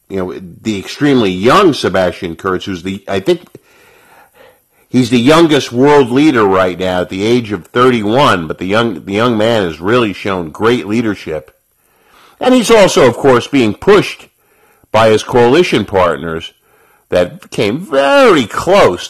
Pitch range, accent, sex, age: 95-130 Hz, American, male, 50-69